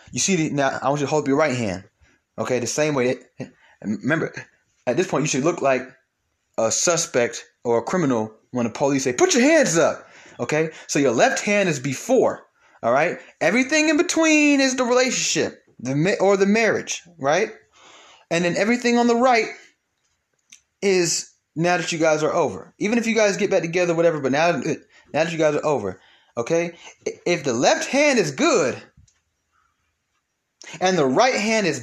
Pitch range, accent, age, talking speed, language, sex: 135-210 Hz, American, 20-39, 190 wpm, English, male